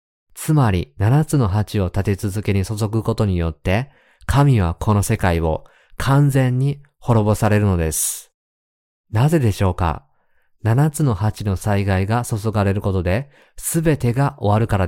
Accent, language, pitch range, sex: native, Japanese, 90-115 Hz, male